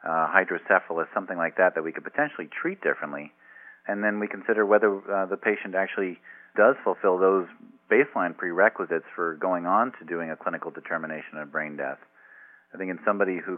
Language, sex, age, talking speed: English, male, 40-59, 180 wpm